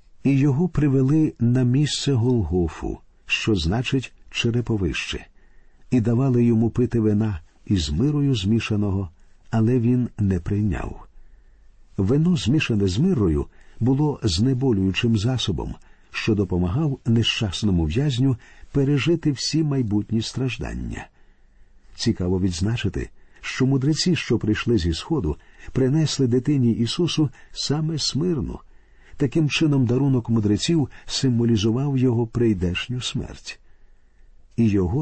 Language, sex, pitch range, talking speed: Ukrainian, male, 100-135 Hz, 100 wpm